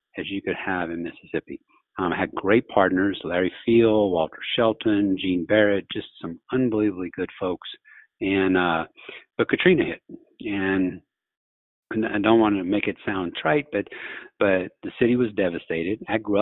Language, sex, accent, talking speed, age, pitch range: English, male, American, 165 wpm, 50-69, 90-115 Hz